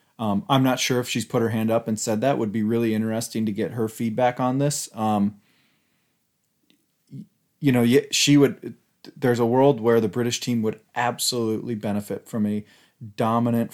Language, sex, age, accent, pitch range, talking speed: English, male, 30-49, American, 105-120 Hz, 180 wpm